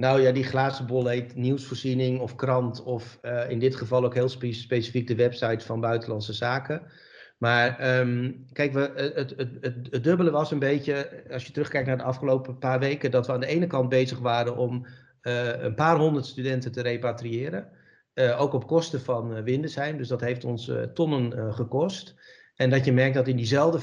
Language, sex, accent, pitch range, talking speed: Dutch, male, Dutch, 120-130 Hz, 200 wpm